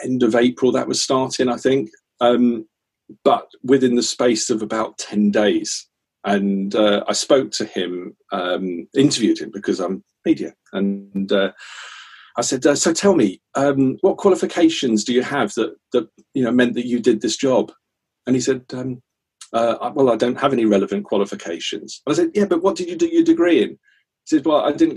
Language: English